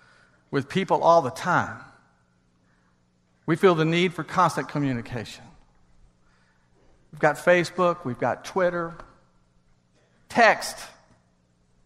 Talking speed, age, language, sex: 95 wpm, 50-69, English, male